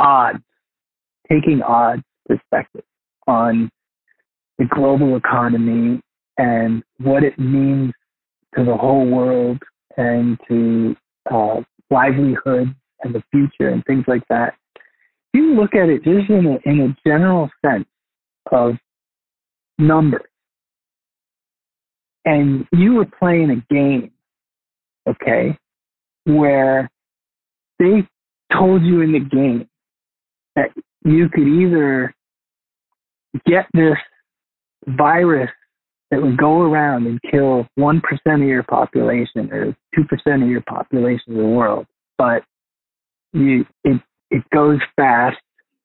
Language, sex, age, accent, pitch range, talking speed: English, male, 40-59, American, 120-155 Hz, 115 wpm